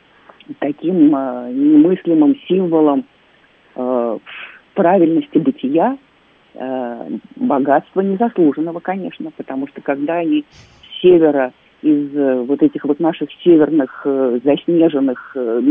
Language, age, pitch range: Russian, 40-59, 140-215 Hz